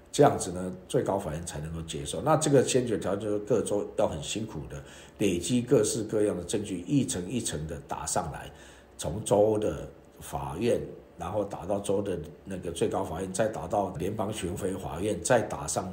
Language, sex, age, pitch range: Chinese, male, 50-69, 85-105 Hz